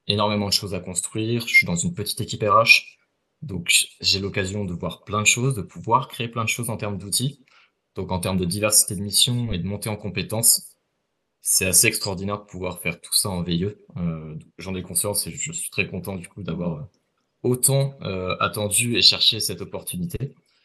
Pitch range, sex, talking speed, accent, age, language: 90-105 Hz, male, 200 wpm, French, 20-39, French